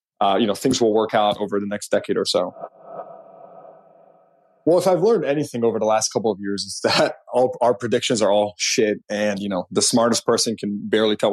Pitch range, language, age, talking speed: 100-115 Hz, English, 20-39, 215 wpm